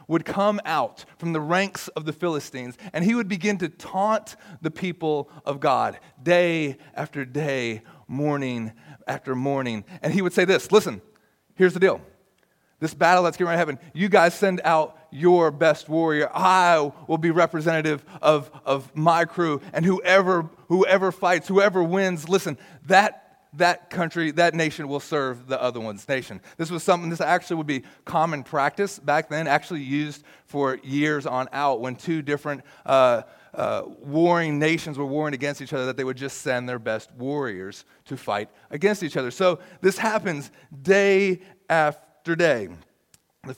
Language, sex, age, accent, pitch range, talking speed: English, male, 30-49, American, 145-180 Hz, 170 wpm